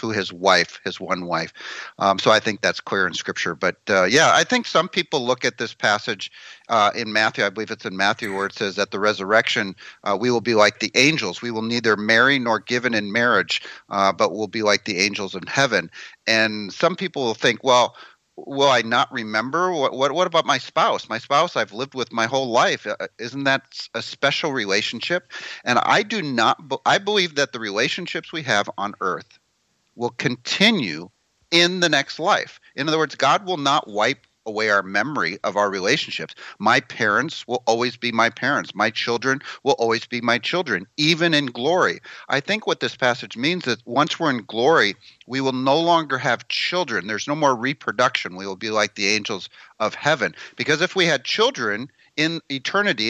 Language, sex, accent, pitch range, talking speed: English, male, American, 110-140 Hz, 200 wpm